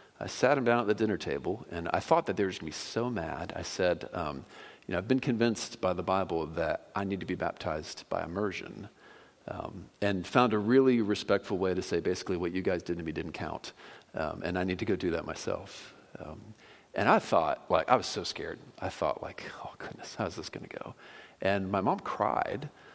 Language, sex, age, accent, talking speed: English, male, 40-59, American, 235 wpm